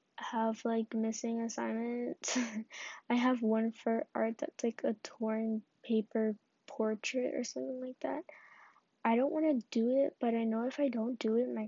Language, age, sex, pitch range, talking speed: English, 10-29, female, 220-255 Hz, 175 wpm